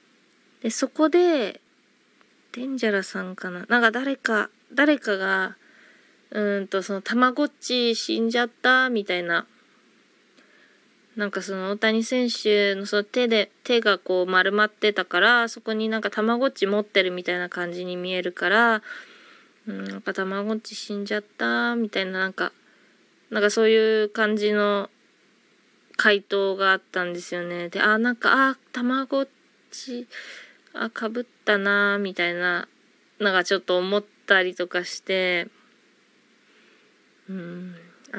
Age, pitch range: 20-39, 195-255 Hz